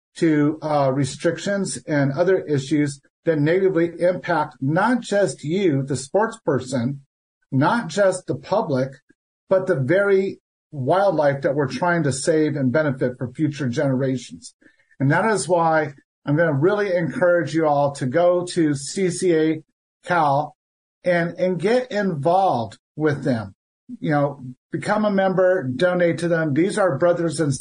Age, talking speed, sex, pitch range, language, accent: 50-69, 145 wpm, male, 145-180 Hz, English, American